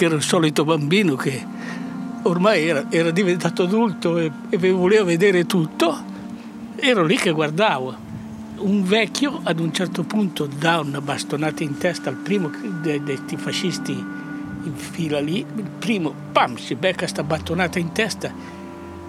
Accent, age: native, 60-79